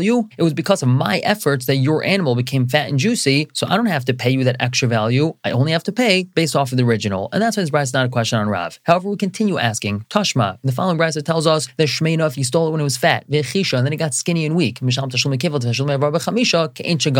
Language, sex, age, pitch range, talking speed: English, male, 30-49, 125-165 Hz, 260 wpm